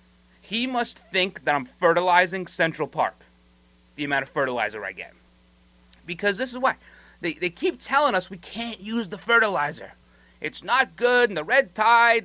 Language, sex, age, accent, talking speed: English, male, 30-49, American, 170 wpm